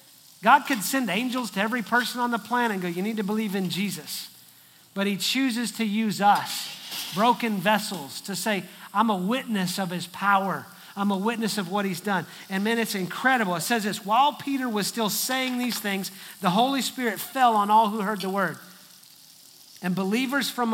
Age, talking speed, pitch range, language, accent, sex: 40-59, 195 wpm, 200-260 Hz, English, American, male